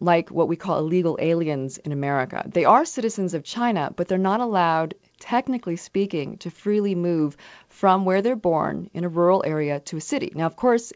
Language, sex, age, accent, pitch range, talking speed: English, female, 30-49, American, 145-185 Hz, 195 wpm